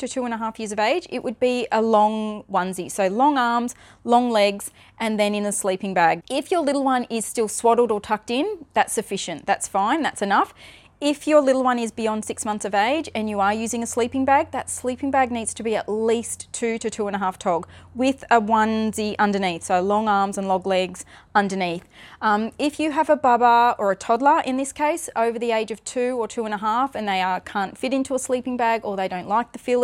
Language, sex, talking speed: English, female, 240 wpm